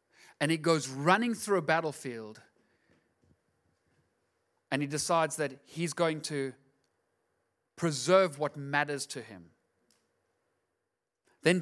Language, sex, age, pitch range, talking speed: English, male, 30-49, 150-200 Hz, 105 wpm